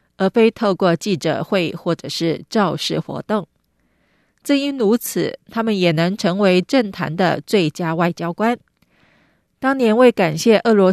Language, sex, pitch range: Chinese, female, 170-220 Hz